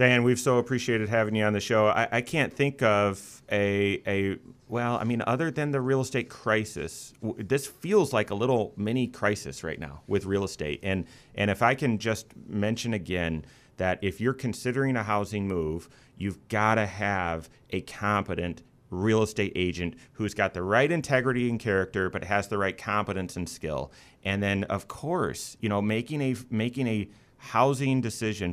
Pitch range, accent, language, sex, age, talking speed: 95-125 Hz, American, English, male, 30-49, 185 wpm